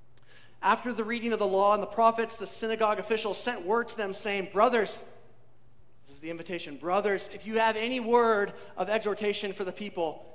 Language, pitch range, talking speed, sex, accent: English, 140-215 Hz, 190 wpm, male, American